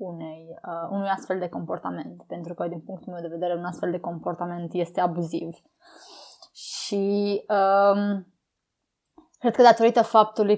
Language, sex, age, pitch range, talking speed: Romanian, female, 20-39, 180-215 Hz, 140 wpm